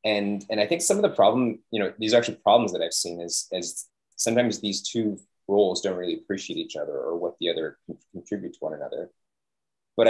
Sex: male